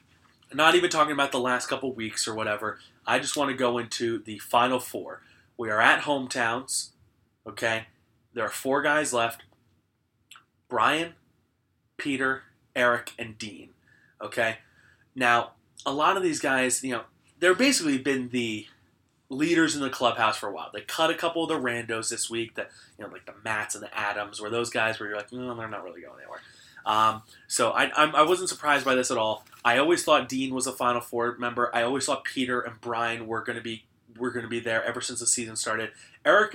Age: 20-39